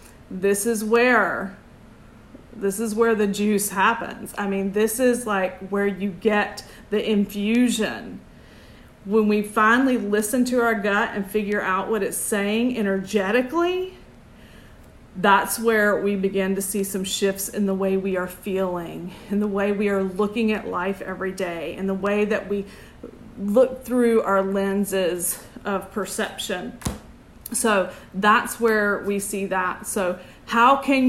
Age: 30-49